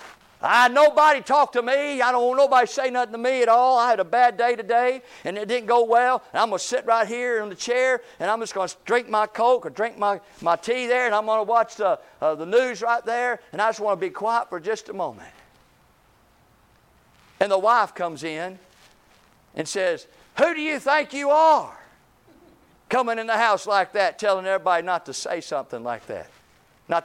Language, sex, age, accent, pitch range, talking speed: English, male, 50-69, American, 190-245 Hz, 220 wpm